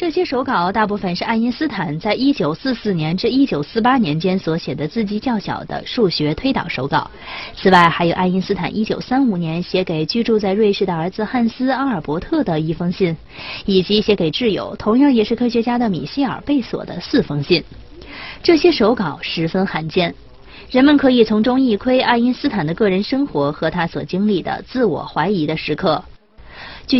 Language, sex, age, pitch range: Chinese, female, 20-39, 170-245 Hz